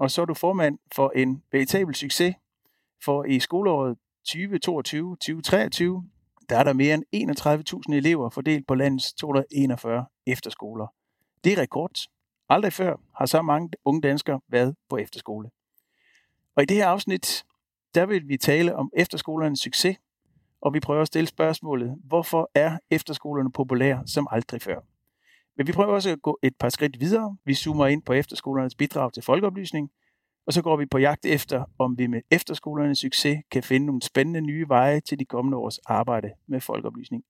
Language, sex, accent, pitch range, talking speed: Danish, male, native, 130-160 Hz, 170 wpm